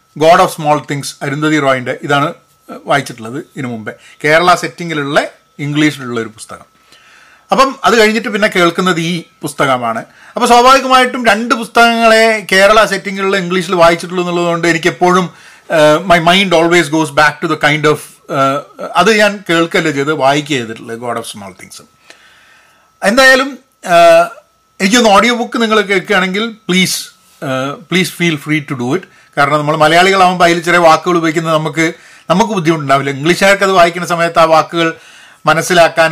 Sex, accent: male, native